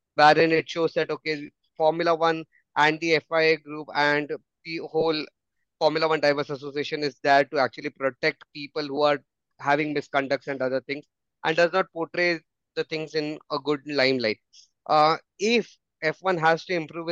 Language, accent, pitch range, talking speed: English, Indian, 135-160 Hz, 165 wpm